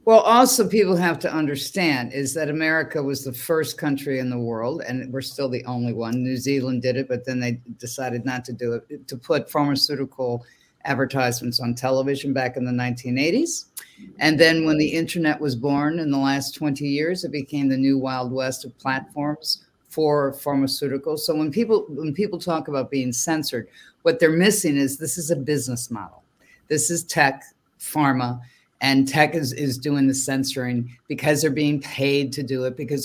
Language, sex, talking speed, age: English, female, 185 wpm, 50-69